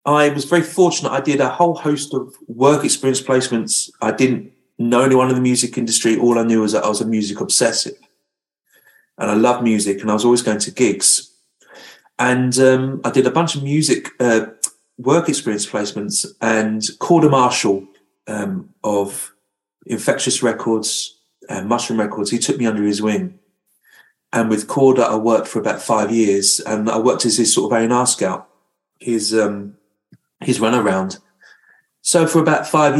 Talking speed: 175 wpm